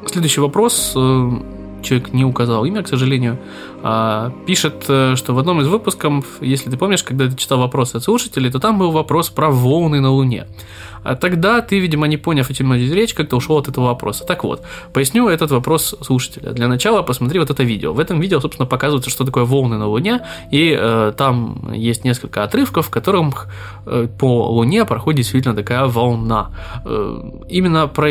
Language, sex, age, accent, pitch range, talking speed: Russian, male, 20-39, native, 125-155 Hz, 185 wpm